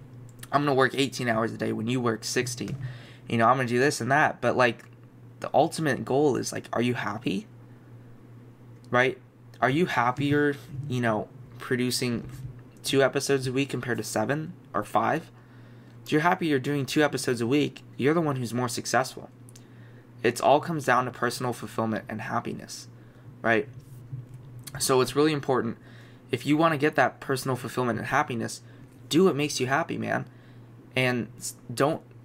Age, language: 20-39, English